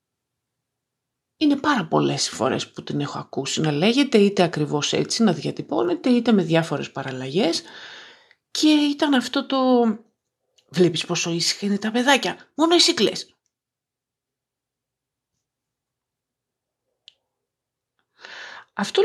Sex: female